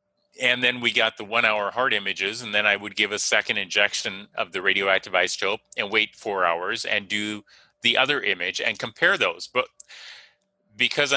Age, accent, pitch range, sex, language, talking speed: 30-49, American, 105-135 Hz, male, English, 185 wpm